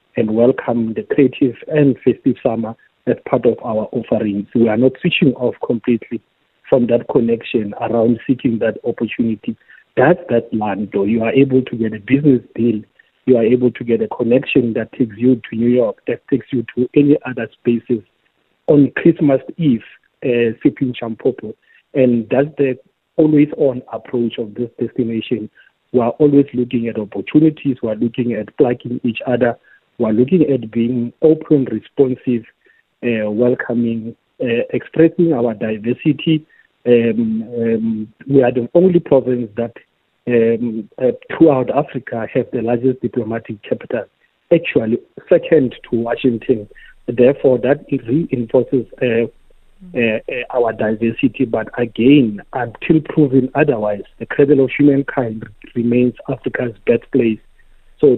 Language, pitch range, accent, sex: English, 115-135 Hz, South African, male